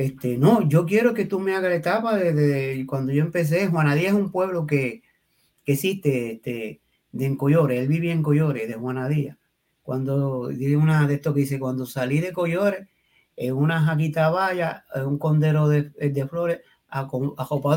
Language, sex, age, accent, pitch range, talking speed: Spanish, male, 30-49, American, 140-170 Hz, 180 wpm